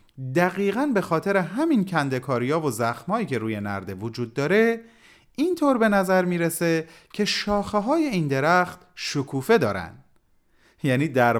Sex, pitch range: male, 120-200 Hz